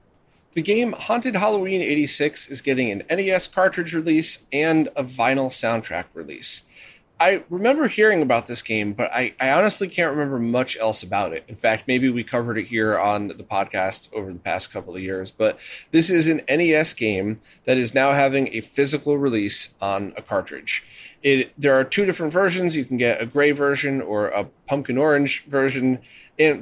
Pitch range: 115-155 Hz